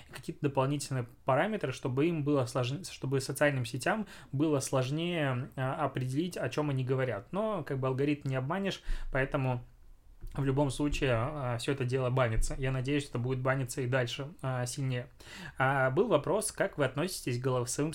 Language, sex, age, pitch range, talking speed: Russian, male, 20-39, 130-150 Hz, 155 wpm